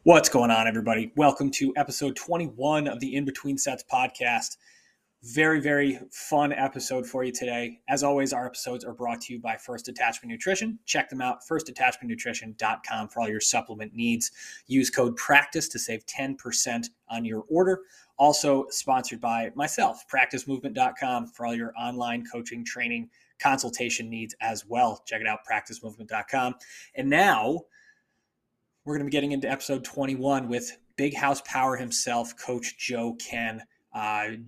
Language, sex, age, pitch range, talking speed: English, male, 20-39, 115-140 Hz, 155 wpm